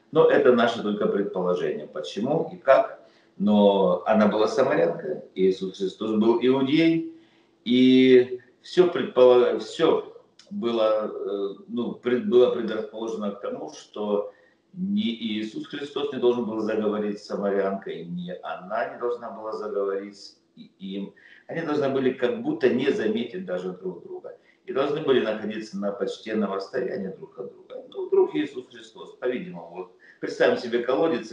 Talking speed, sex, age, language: 140 wpm, male, 50-69, Russian